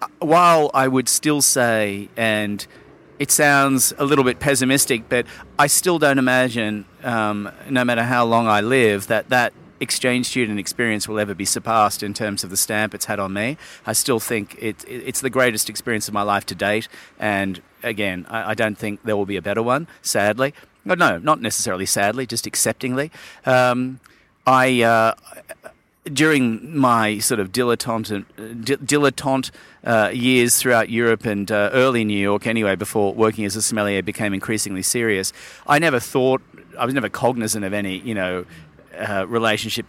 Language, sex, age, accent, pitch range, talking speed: English, male, 40-59, Australian, 100-120 Hz, 175 wpm